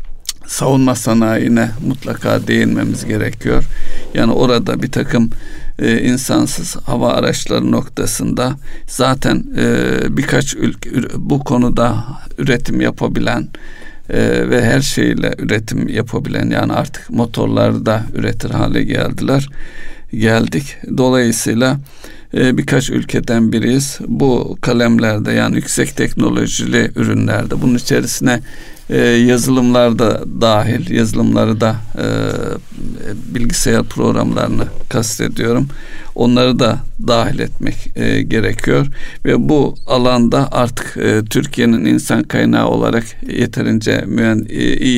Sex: male